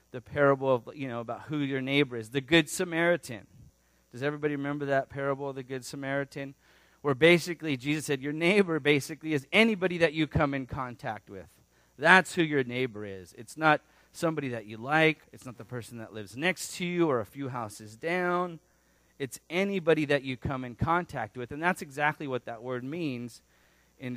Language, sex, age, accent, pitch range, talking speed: English, male, 30-49, American, 120-160 Hz, 195 wpm